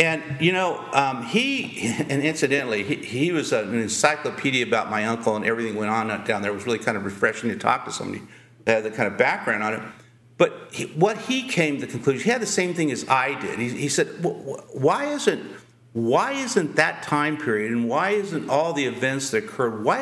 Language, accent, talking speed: English, American, 225 wpm